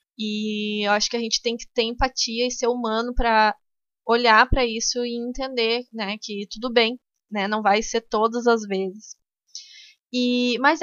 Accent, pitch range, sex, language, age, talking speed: Brazilian, 210-250 Hz, female, Portuguese, 20-39, 170 wpm